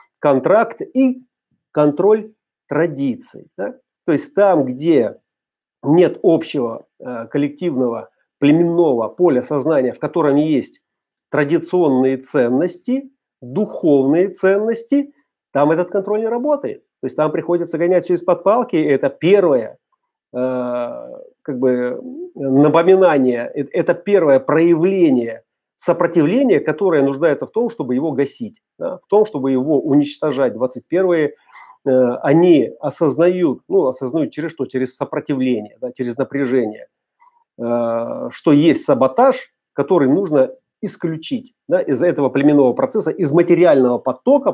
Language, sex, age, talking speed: Russian, male, 40-59, 110 wpm